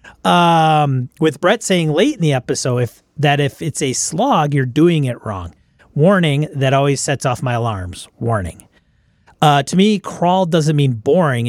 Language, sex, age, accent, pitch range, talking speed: English, male, 40-59, American, 125-155 Hz, 165 wpm